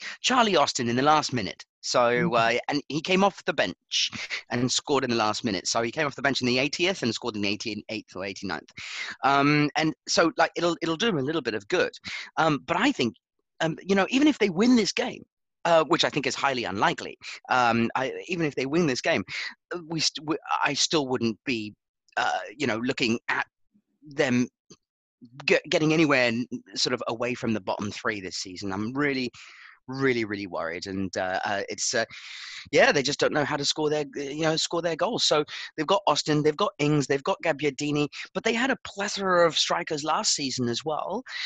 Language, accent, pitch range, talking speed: English, British, 120-160 Hz, 205 wpm